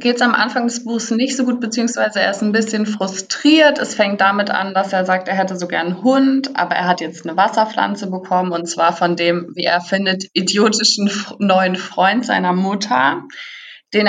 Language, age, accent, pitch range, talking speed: German, 20-39, German, 175-215 Hz, 205 wpm